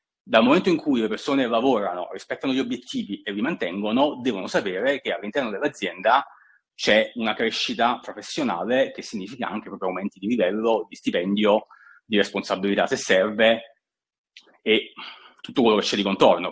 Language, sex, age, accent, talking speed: Italian, male, 30-49, native, 155 wpm